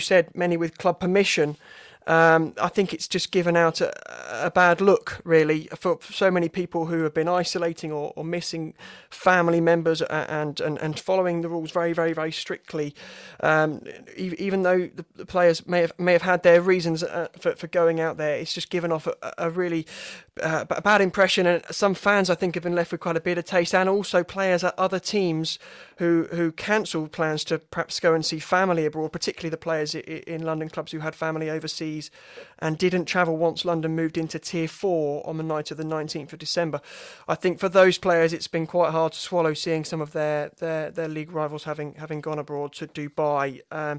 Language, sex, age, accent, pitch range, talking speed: English, male, 30-49, British, 160-180 Hz, 205 wpm